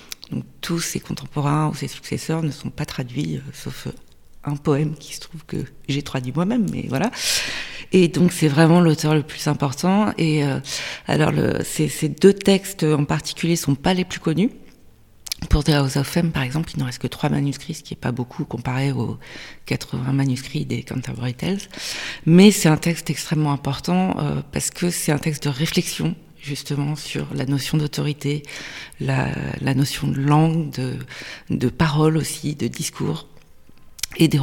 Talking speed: 180 wpm